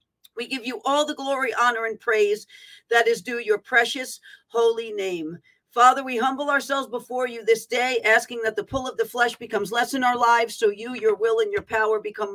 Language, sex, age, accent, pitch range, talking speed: English, female, 50-69, American, 225-275 Hz, 215 wpm